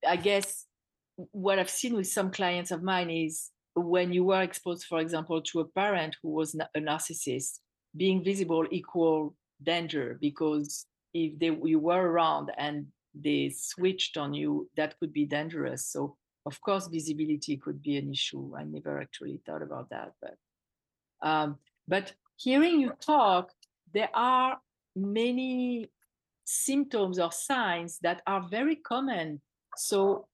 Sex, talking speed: female, 145 wpm